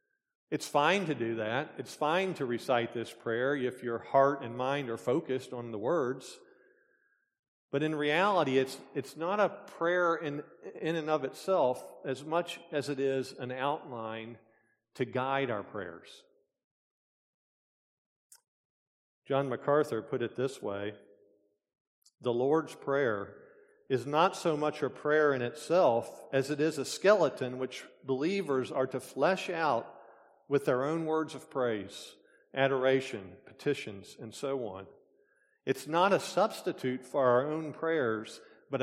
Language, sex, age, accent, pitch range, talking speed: English, male, 50-69, American, 125-165 Hz, 145 wpm